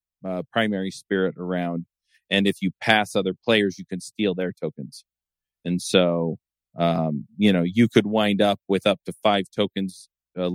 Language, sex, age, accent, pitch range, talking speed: English, male, 40-59, American, 95-115 Hz, 170 wpm